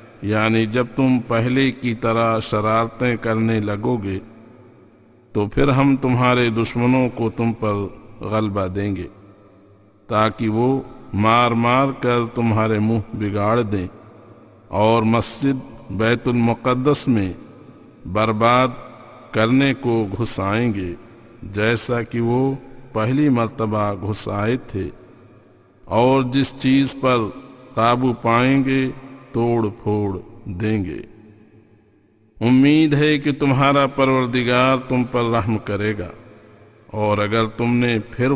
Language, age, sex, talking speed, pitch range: English, 50-69, male, 105 wpm, 105-125 Hz